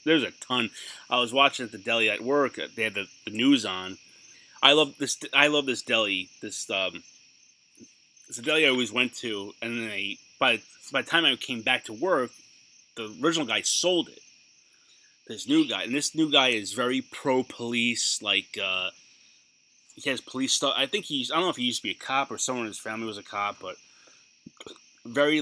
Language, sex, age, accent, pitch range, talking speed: English, male, 30-49, American, 110-150 Hz, 210 wpm